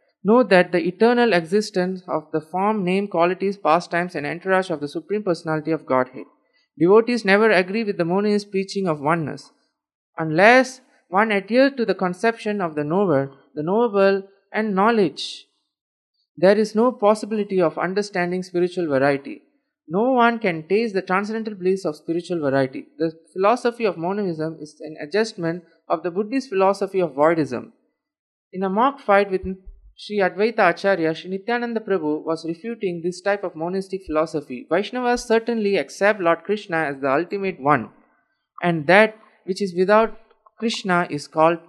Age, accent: 20-39, Indian